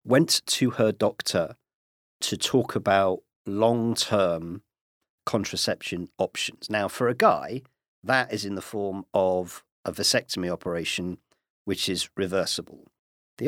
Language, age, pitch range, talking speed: English, 50-69, 95-130 Hz, 120 wpm